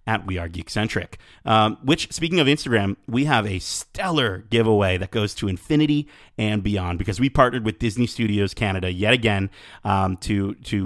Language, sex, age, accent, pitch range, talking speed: English, male, 30-49, American, 100-130 Hz, 180 wpm